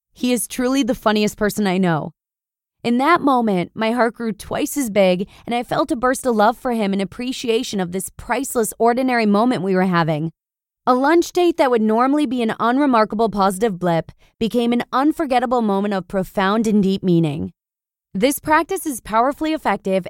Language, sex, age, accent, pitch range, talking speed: English, female, 20-39, American, 195-255 Hz, 180 wpm